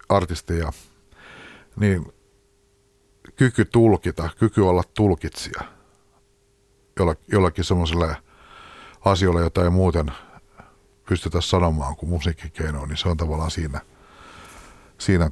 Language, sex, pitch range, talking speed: Finnish, male, 85-105 Hz, 90 wpm